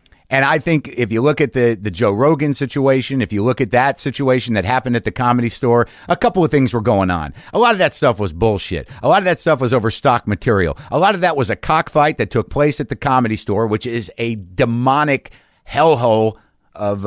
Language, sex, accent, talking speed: English, male, American, 235 wpm